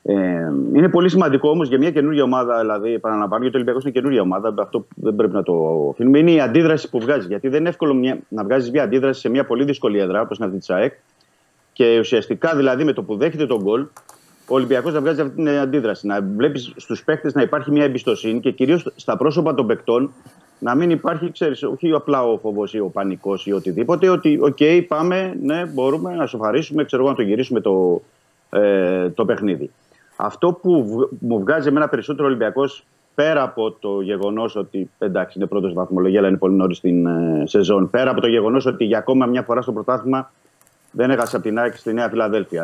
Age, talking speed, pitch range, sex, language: 30-49, 210 wpm, 105-145 Hz, male, Greek